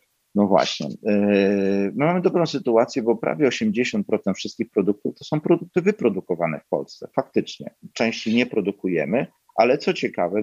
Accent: native